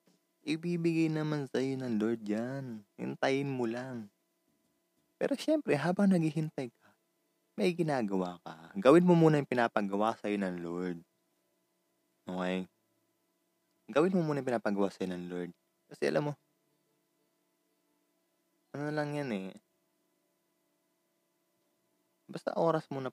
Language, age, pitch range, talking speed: Filipino, 20-39, 110-155 Hz, 110 wpm